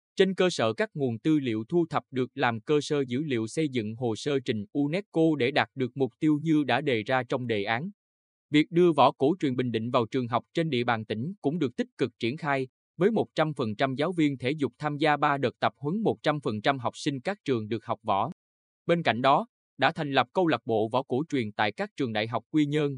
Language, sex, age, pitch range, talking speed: Vietnamese, male, 20-39, 115-150 Hz, 240 wpm